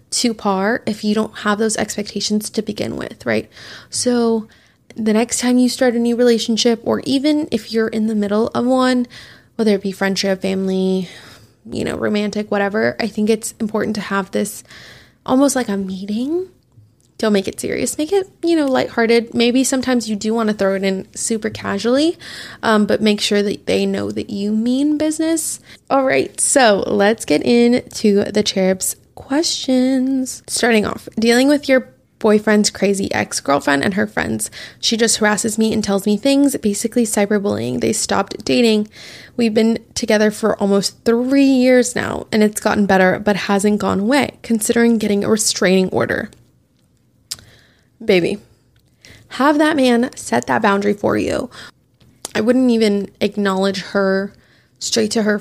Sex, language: female, English